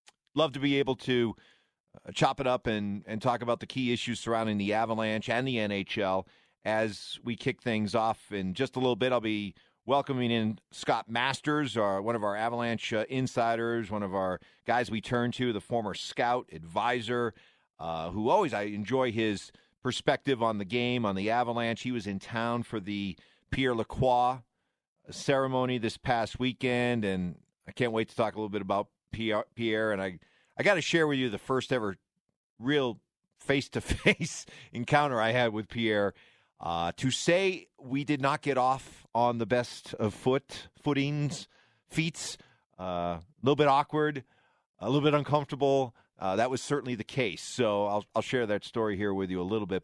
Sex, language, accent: male, English, American